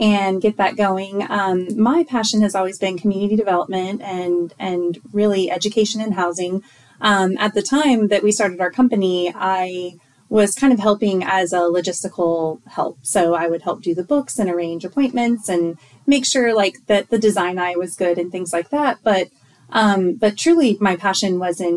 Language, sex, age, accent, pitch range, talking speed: English, female, 30-49, American, 180-210 Hz, 185 wpm